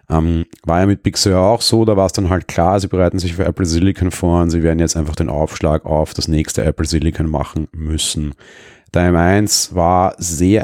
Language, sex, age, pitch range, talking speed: German, male, 30-49, 85-95 Hz, 210 wpm